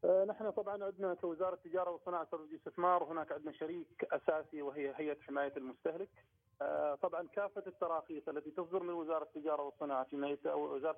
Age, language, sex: 40-59, Arabic, male